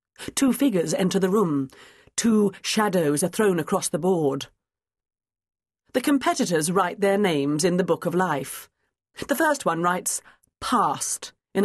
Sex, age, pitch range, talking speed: female, 40-59, 145-200 Hz, 145 wpm